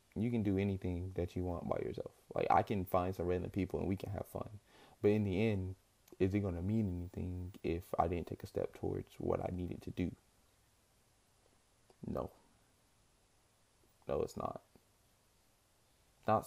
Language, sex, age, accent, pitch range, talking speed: English, male, 20-39, American, 95-110 Hz, 175 wpm